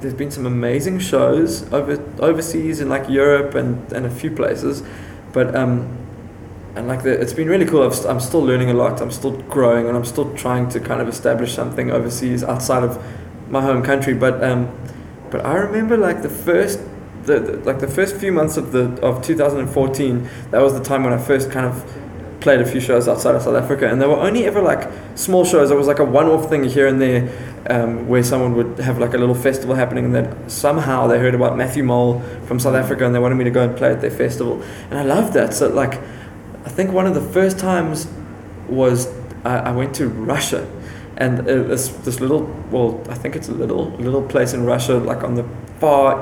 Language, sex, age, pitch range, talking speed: English, male, 20-39, 120-140 Hz, 225 wpm